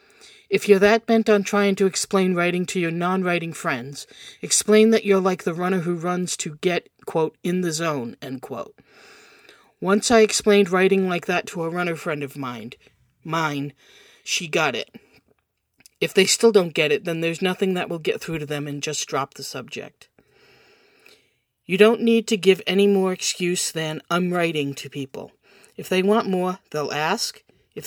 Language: English